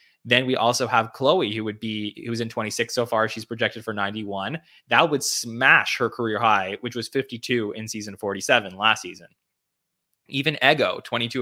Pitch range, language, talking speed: 100-115 Hz, English, 180 wpm